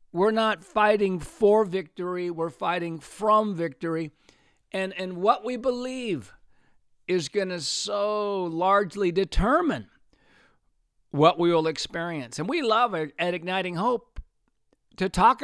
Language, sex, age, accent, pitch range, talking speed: English, male, 60-79, American, 160-205 Hz, 125 wpm